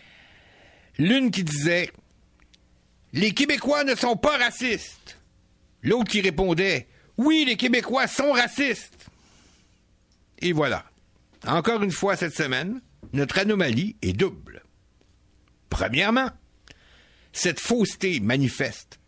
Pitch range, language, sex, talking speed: 130-210 Hz, French, male, 100 wpm